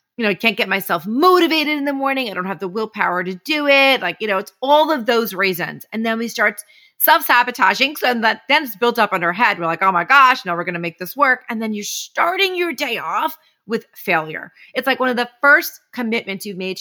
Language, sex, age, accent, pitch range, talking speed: English, female, 30-49, American, 195-275 Hz, 245 wpm